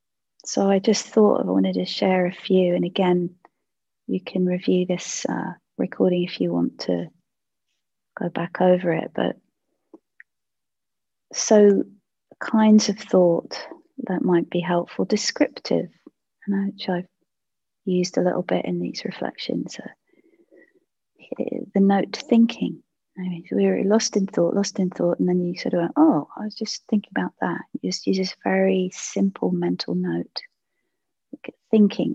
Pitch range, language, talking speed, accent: 175-205 Hz, English, 155 wpm, British